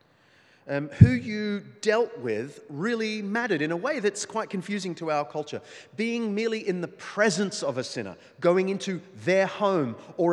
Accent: Australian